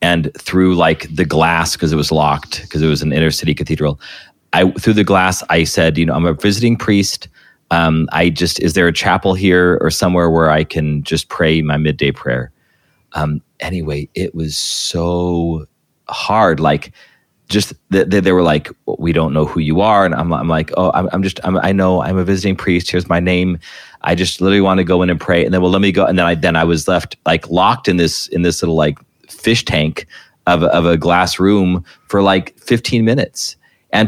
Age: 30-49